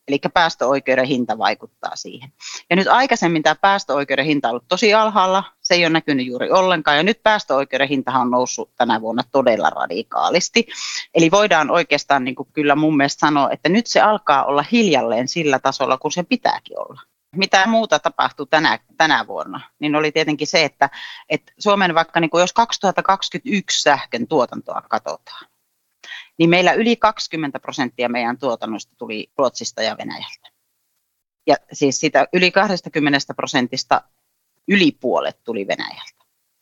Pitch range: 135-185 Hz